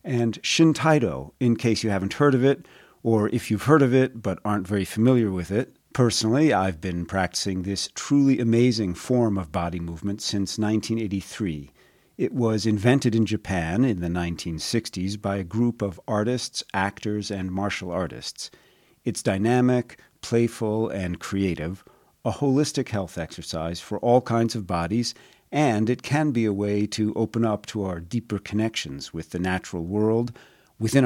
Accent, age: American, 50-69